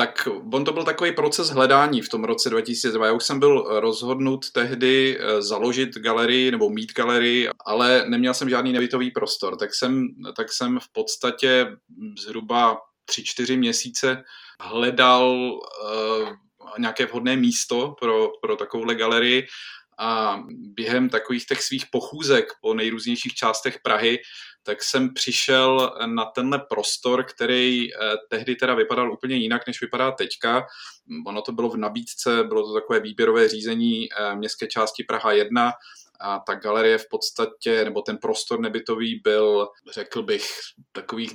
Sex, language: male, Czech